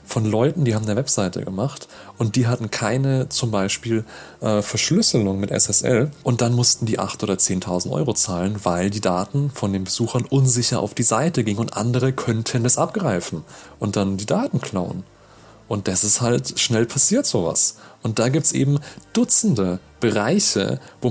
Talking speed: 175 wpm